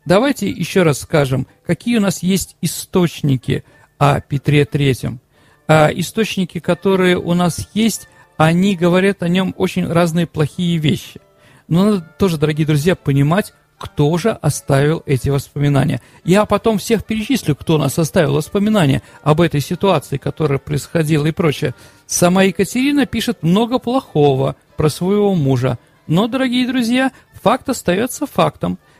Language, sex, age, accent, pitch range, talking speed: Russian, male, 40-59, native, 145-195 Hz, 135 wpm